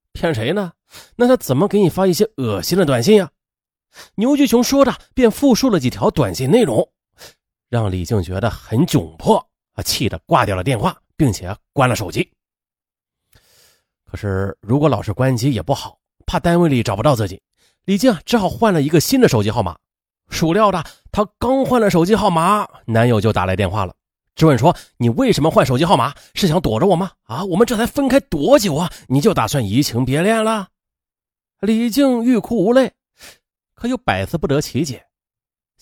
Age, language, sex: 30-49, Chinese, male